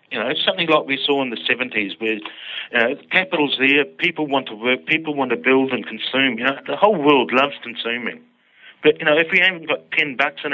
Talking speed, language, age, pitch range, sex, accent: 235 wpm, English, 40-59, 130-155 Hz, male, British